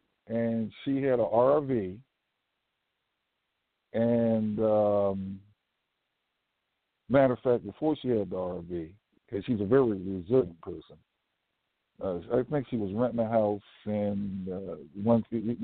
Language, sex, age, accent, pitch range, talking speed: English, male, 60-79, American, 105-135 Hz, 120 wpm